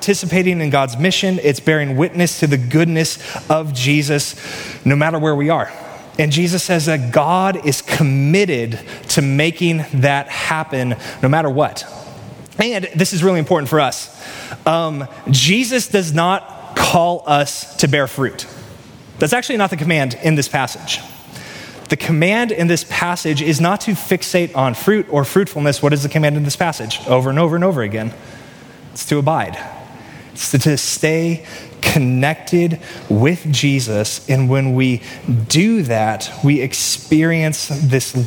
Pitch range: 130-170 Hz